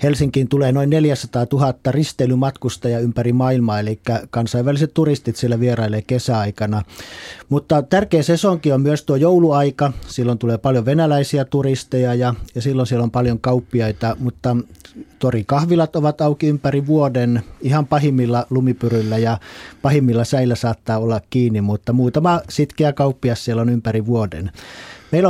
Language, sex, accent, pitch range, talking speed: Finnish, male, native, 115-140 Hz, 140 wpm